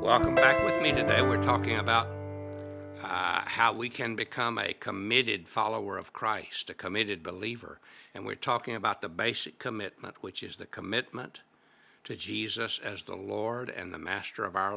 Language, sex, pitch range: English, male, 100-120 Hz